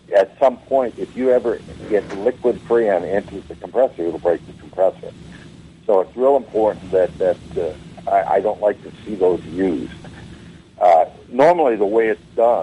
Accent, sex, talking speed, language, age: American, male, 180 wpm, English, 60-79